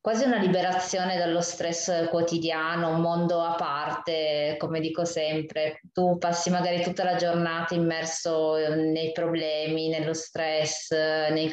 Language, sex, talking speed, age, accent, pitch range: Italian, female, 130 wpm, 20-39, native, 155-175 Hz